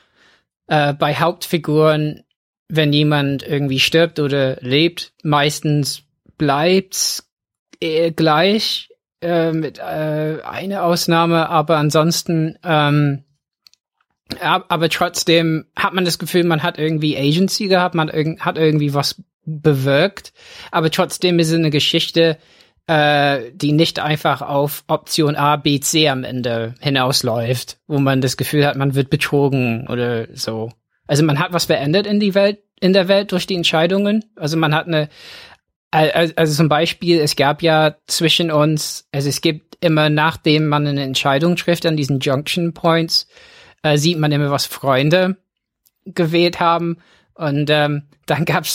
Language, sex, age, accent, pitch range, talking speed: German, male, 20-39, German, 145-170 Hz, 145 wpm